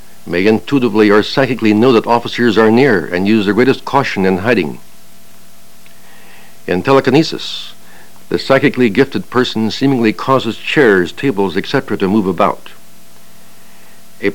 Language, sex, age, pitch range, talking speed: English, male, 60-79, 95-130 Hz, 130 wpm